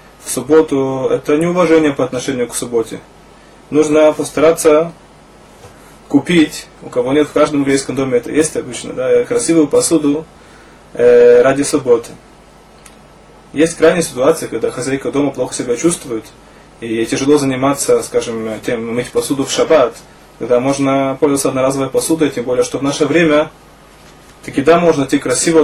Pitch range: 135-165 Hz